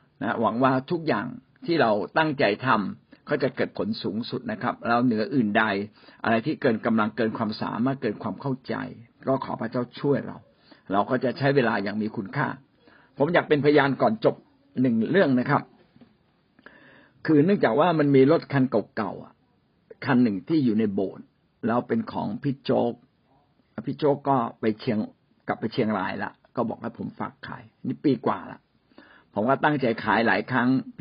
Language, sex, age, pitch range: Thai, male, 60-79, 120-155 Hz